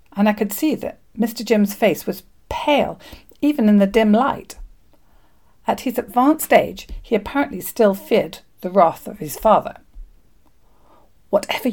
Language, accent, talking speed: English, British, 150 wpm